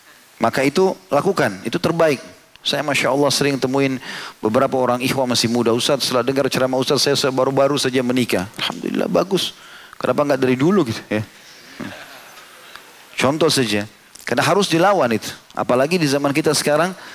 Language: Indonesian